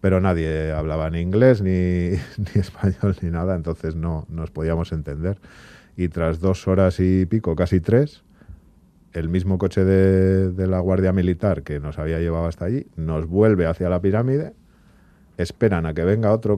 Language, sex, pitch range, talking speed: Spanish, male, 85-95 Hz, 170 wpm